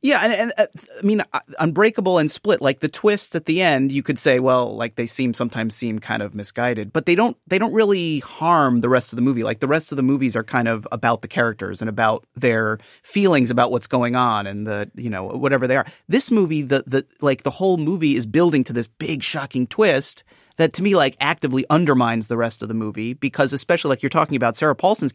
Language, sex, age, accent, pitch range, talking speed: English, male, 30-49, American, 125-165 Hz, 240 wpm